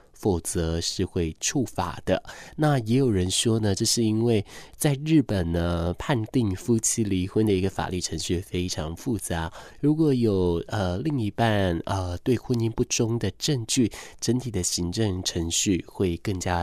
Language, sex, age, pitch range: Chinese, male, 20-39, 90-120 Hz